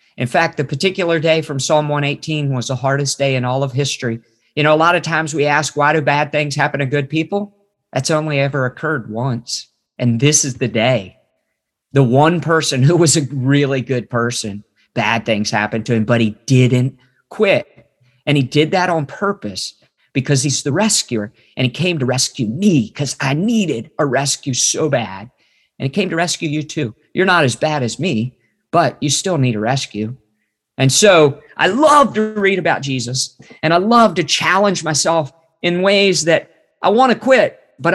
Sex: male